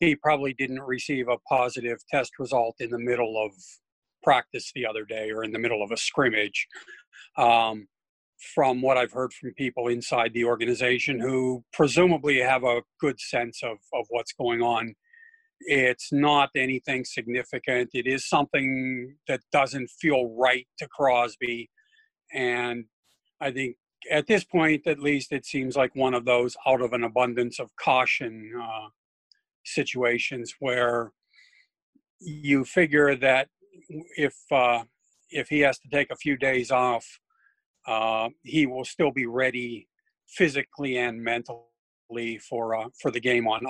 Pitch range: 120-140 Hz